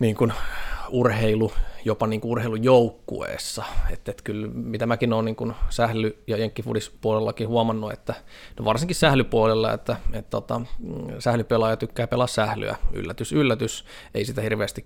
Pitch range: 105-120 Hz